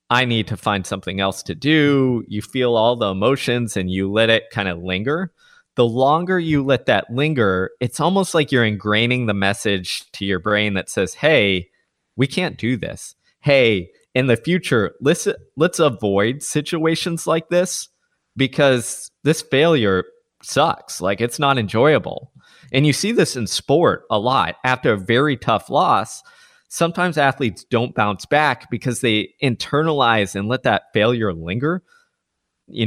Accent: American